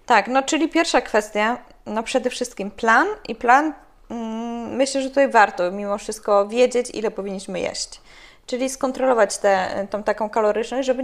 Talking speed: 160 wpm